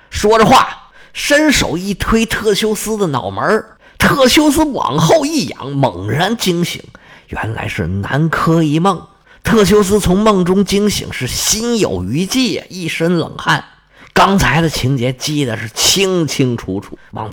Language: Chinese